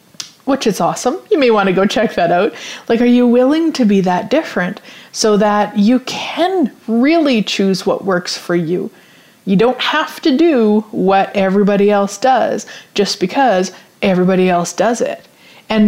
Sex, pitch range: female, 195-250 Hz